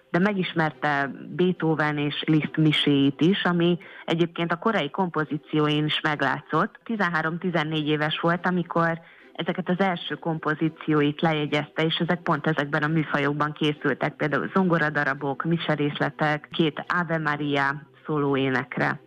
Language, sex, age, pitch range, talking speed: Hungarian, female, 30-49, 150-175 Hz, 115 wpm